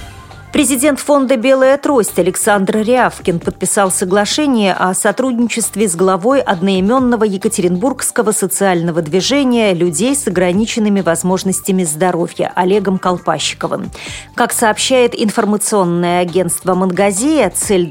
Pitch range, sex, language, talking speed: 185-240 Hz, female, Russian, 95 wpm